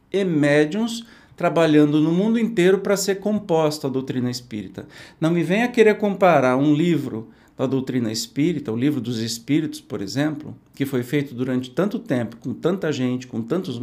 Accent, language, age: Brazilian, Portuguese, 50-69